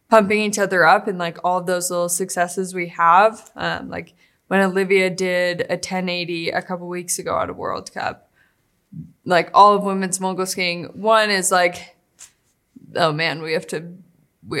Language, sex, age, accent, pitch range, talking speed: English, female, 20-39, American, 175-200 Hz, 180 wpm